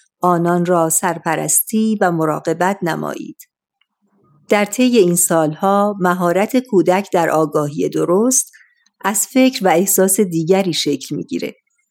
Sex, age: female, 50-69